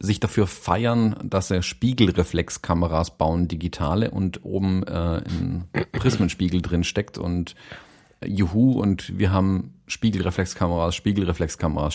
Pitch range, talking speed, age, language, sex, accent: 95-130 Hz, 115 wpm, 40-59, German, male, German